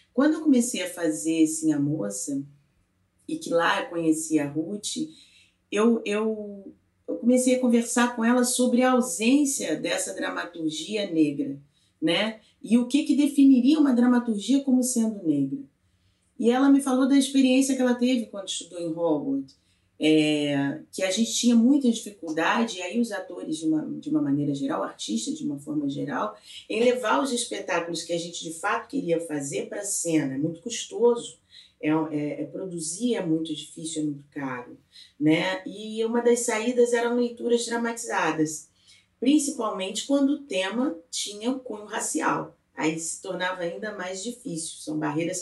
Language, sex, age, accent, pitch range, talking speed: Portuguese, female, 30-49, Brazilian, 160-250 Hz, 160 wpm